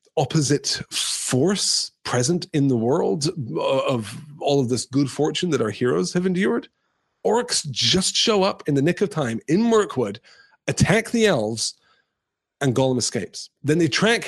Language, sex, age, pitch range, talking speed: English, male, 30-49, 120-170 Hz, 155 wpm